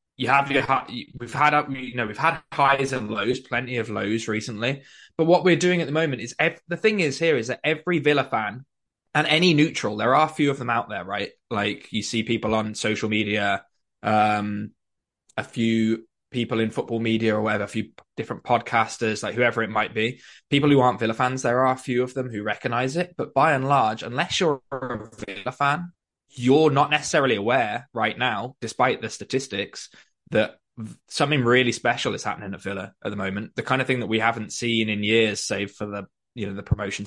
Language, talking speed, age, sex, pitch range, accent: English, 210 wpm, 20-39, male, 105-135 Hz, British